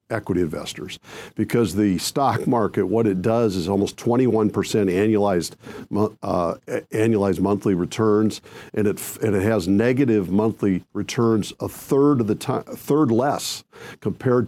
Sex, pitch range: male, 100-125 Hz